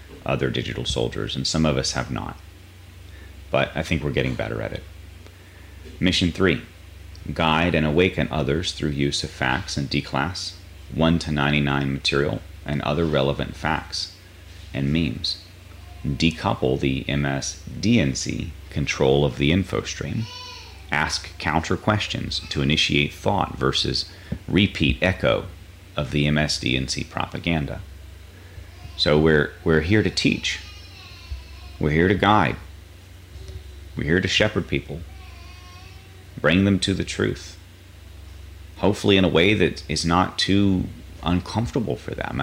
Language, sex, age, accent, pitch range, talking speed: English, male, 30-49, American, 75-90 Hz, 130 wpm